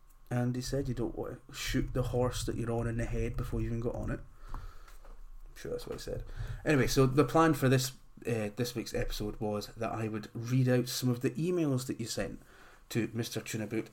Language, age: English, 30-49